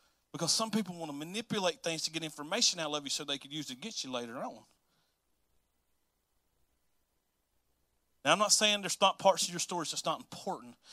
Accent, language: American, English